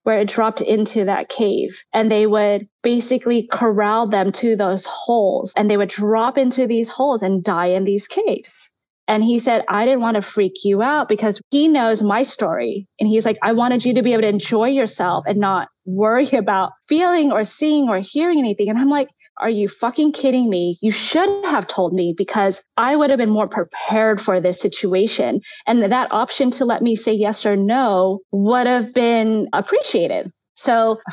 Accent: American